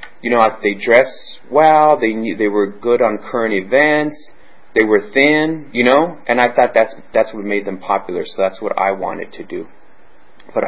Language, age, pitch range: English, 30-49, 105-145 Hz